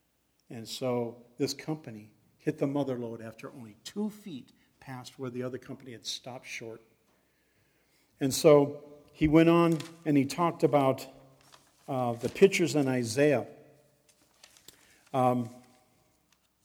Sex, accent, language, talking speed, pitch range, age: male, American, English, 130 wpm, 125-150 Hz, 50-69